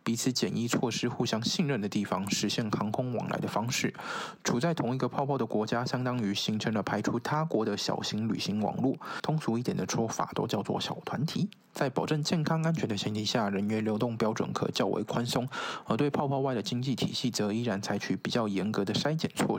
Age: 20-39